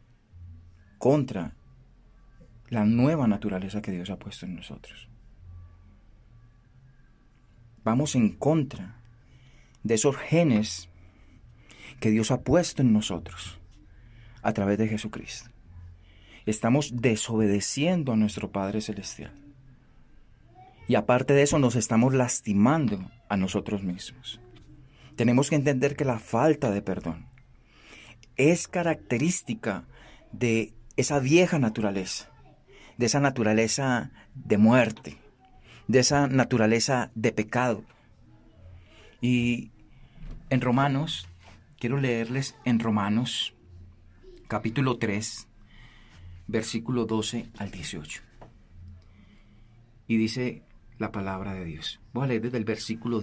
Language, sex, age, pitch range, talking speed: Spanish, male, 30-49, 100-125 Hz, 105 wpm